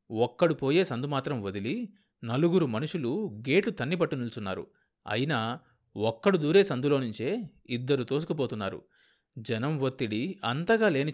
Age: 30-49